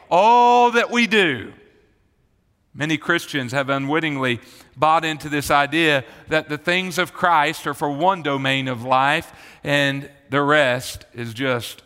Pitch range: 130-165 Hz